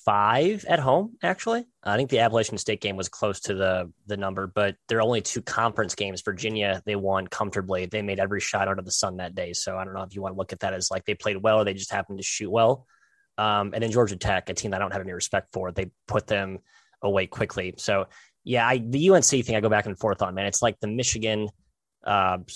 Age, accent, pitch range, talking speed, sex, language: 20-39, American, 95-115 Hz, 255 wpm, male, English